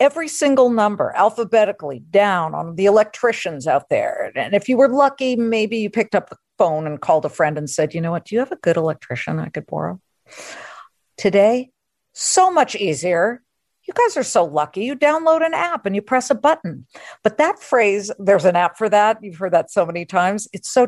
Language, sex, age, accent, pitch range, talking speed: English, female, 50-69, American, 170-235 Hz, 210 wpm